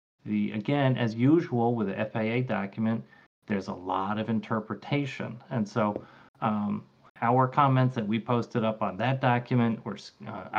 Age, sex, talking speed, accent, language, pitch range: 30-49, male, 145 wpm, American, English, 105-120 Hz